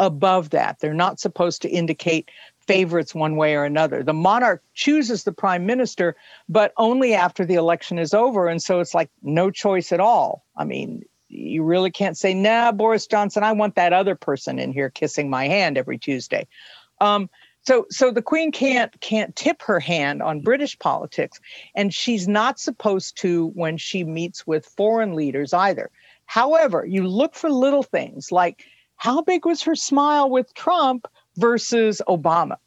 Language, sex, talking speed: English, female, 175 wpm